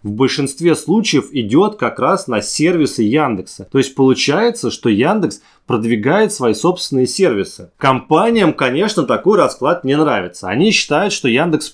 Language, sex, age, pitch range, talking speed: Russian, male, 20-39, 125-175 Hz, 145 wpm